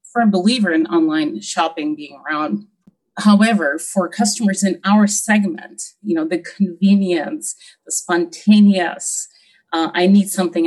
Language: English